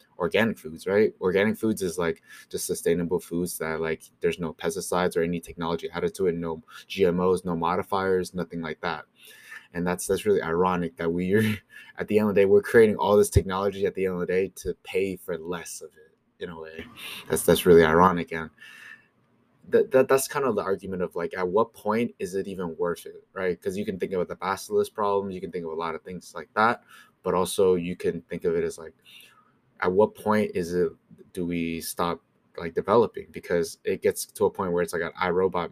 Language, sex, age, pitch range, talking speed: English, male, 20-39, 85-110 Hz, 220 wpm